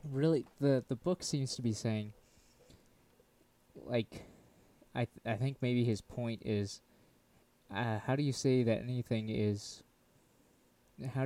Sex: male